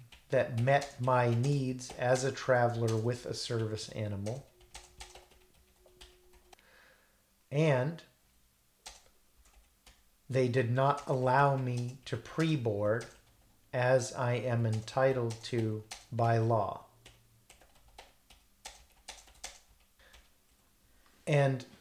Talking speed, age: 75 wpm, 40-59